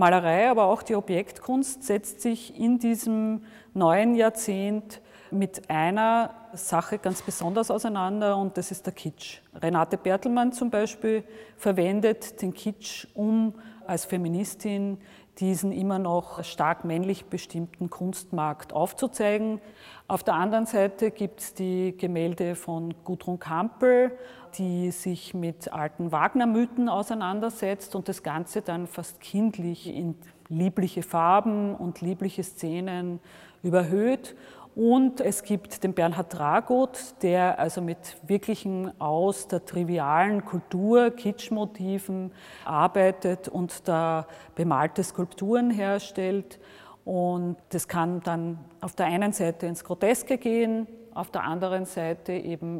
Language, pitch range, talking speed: German, 175-215 Hz, 120 wpm